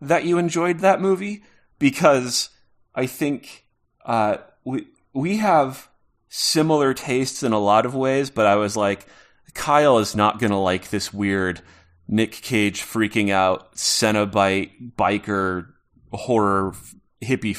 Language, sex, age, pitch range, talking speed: English, male, 30-49, 100-125 Hz, 135 wpm